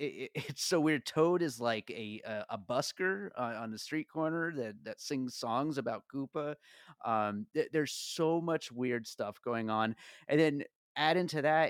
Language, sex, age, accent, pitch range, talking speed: English, male, 30-49, American, 115-140 Hz, 190 wpm